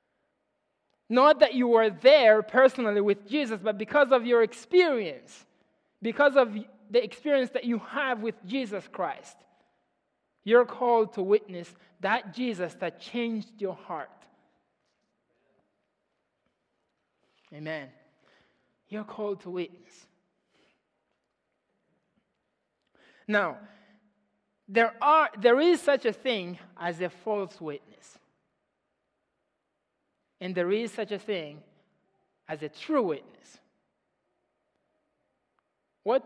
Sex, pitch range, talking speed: male, 190-265 Hz, 100 wpm